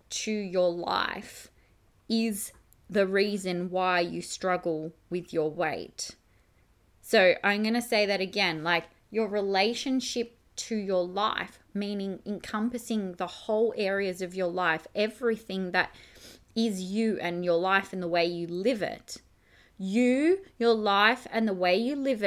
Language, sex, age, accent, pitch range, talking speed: English, female, 20-39, Australian, 190-245 Hz, 145 wpm